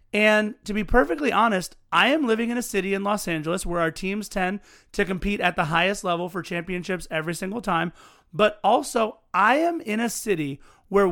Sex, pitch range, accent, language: male, 175-215 Hz, American, English